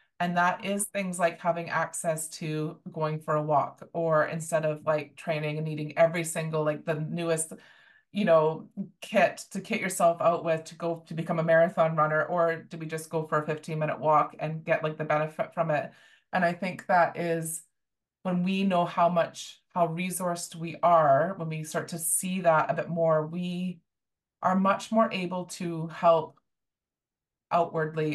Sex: female